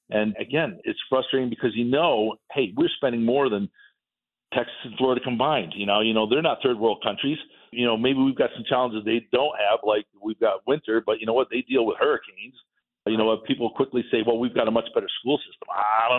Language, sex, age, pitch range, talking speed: English, male, 50-69, 110-135 Hz, 230 wpm